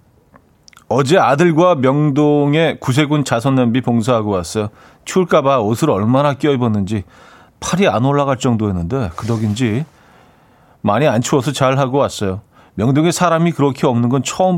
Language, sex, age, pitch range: Korean, male, 40-59, 105-140 Hz